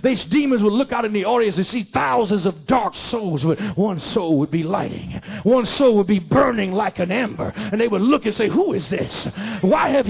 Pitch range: 215-275 Hz